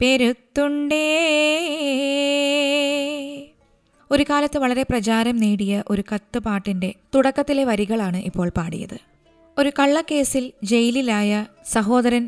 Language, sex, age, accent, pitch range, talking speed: Malayalam, female, 20-39, native, 205-265 Hz, 80 wpm